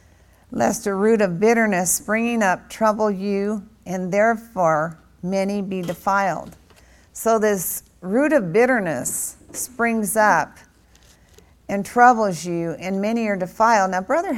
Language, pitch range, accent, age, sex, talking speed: English, 165-215 Hz, American, 50-69, female, 125 wpm